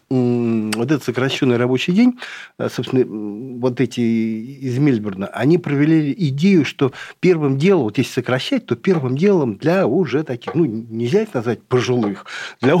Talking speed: 145 wpm